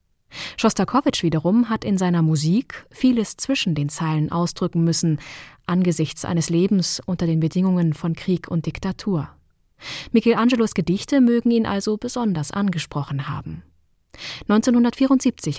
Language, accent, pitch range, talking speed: German, German, 155-210 Hz, 120 wpm